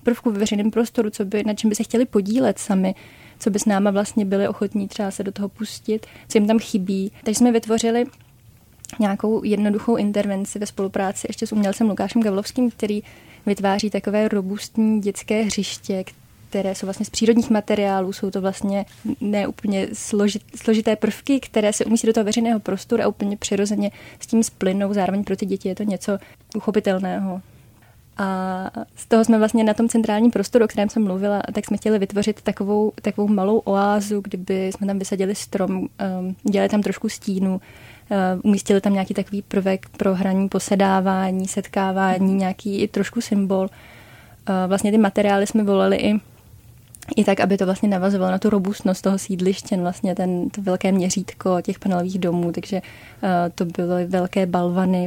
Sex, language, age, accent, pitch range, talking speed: female, Czech, 20-39, native, 190-215 Hz, 170 wpm